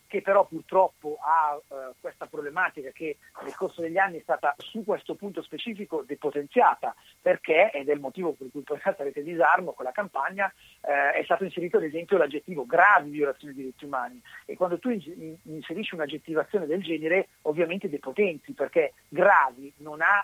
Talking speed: 175 wpm